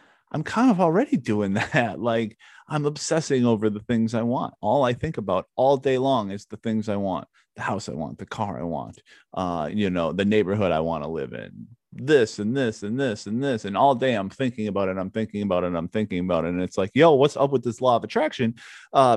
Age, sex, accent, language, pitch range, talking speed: 30-49, male, American, English, 105-135 Hz, 245 wpm